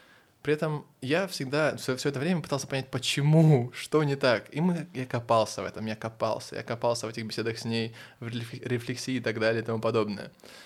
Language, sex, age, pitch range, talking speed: Russian, male, 20-39, 115-155 Hz, 205 wpm